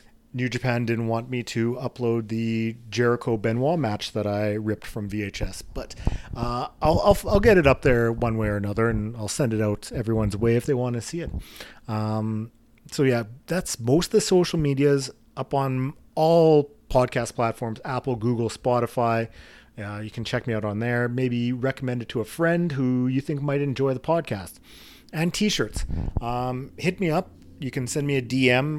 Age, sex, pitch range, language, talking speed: 40-59, male, 115-140 Hz, English, 190 wpm